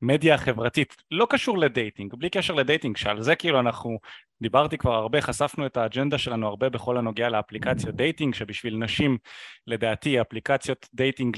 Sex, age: male, 20-39